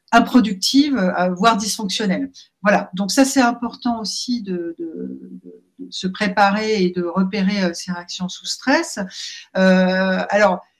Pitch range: 185-250 Hz